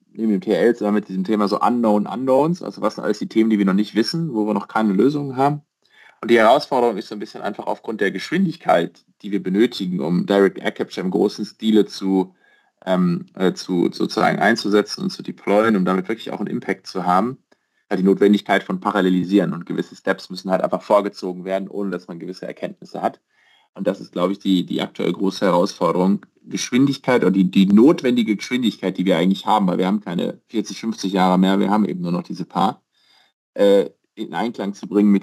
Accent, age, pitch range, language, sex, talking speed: German, 30-49, 95-110 Hz, German, male, 205 wpm